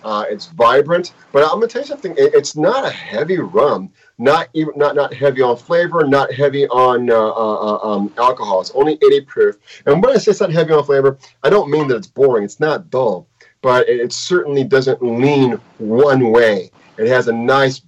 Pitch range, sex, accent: 105-165 Hz, male, American